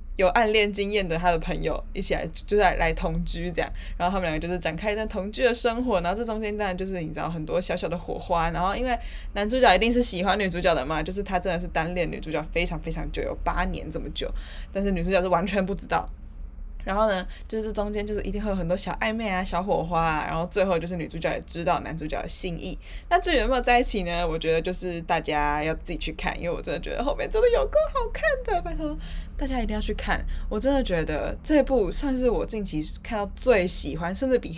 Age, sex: 10-29, female